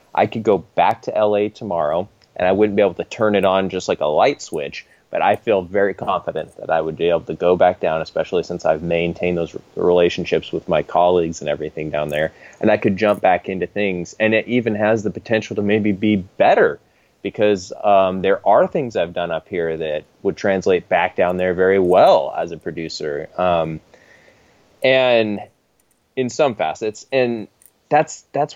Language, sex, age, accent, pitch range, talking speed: English, male, 20-39, American, 90-115 Hz, 195 wpm